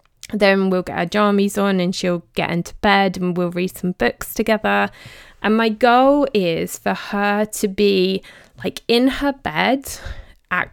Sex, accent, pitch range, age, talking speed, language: female, British, 180-215 Hz, 20-39, 170 wpm, English